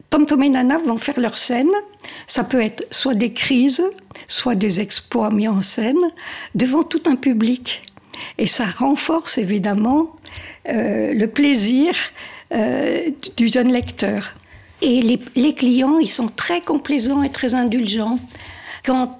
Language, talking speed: French, 145 wpm